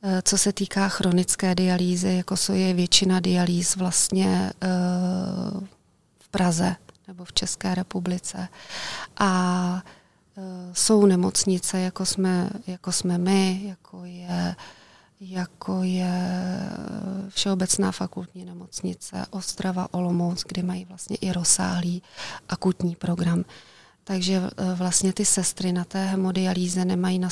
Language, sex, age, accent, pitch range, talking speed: Czech, female, 30-49, native, 180-190 Hz, 110 wpm